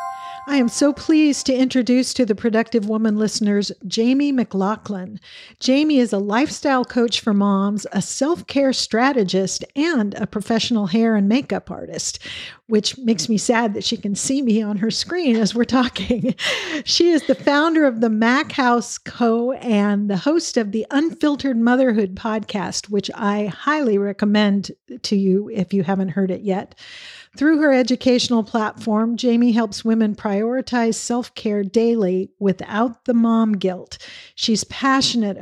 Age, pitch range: 50-69, 205-250 Hz